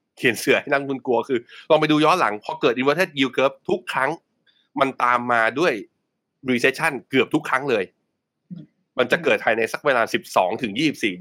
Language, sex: Thai, male